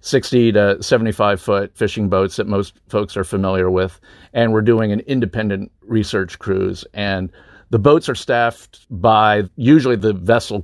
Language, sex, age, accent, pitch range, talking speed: English, male, 50-69, American, 95-110 Hz, 160 wpm